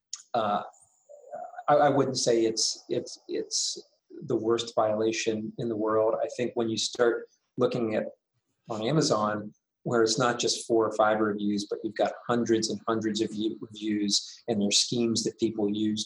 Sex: male